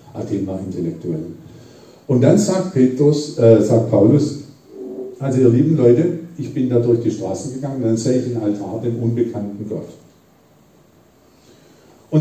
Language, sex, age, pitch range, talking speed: German, male, 50-69, 105-135 Hz, 155 wpm